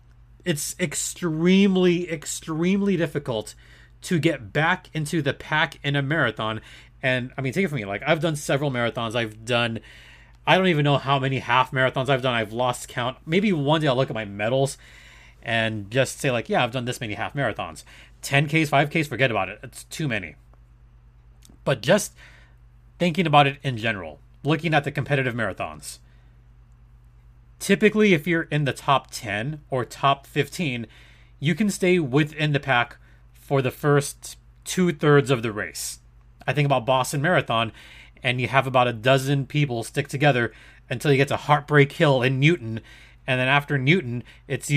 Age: 30-49